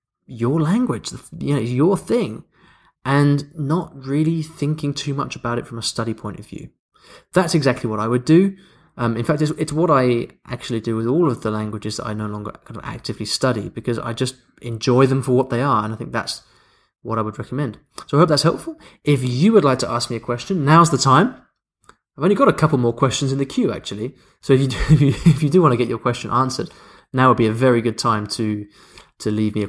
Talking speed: 240 wpm